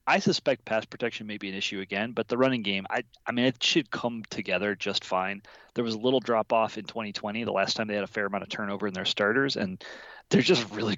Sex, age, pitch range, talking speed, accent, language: male, 30-49, 105-135 Hz, 250 wpm, American, English